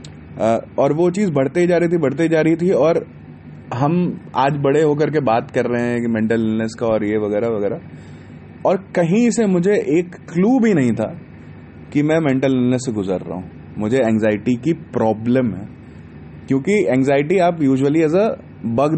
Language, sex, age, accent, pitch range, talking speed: Hindi, male, 20-39, native, 110-150 Hz, 185 wpm